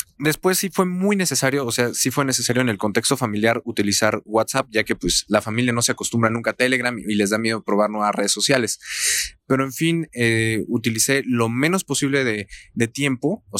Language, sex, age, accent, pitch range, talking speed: Spanish, male, 20-39, Mexican, 110-135 Hz, 205 wpm